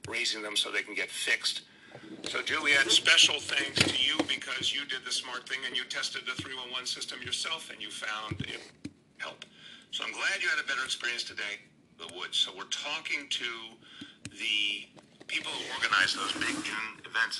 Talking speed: 200 wpm